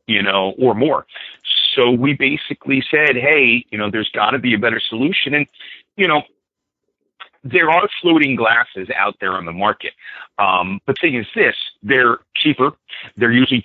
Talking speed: 170 wpm